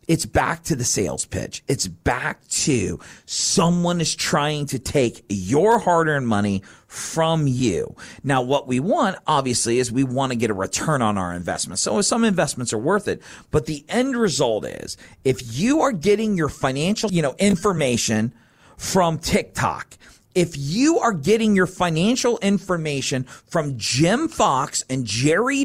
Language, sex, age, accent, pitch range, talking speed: English, male, 40-59, American, 140-200 Hz, 160 wpm